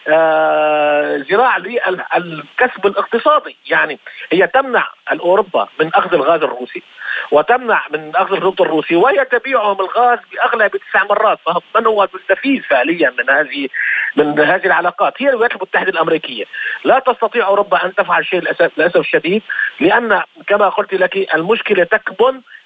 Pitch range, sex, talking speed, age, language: 175-235 Hz, male, 140 wpm, 40-59, Arabic